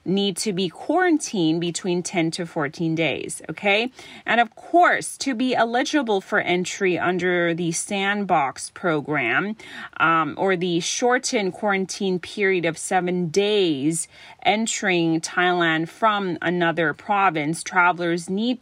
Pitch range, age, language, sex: 170-235 Hz, 30-49, Thai, female